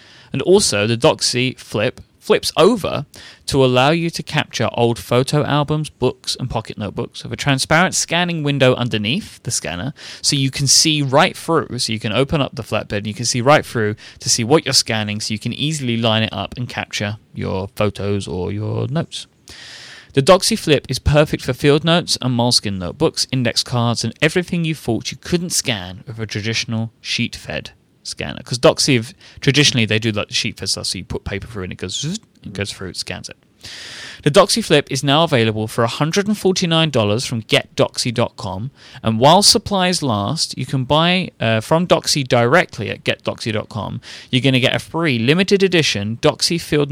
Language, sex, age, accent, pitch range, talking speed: English, male, 30-49, British, 110-150 Hz, 185 wpm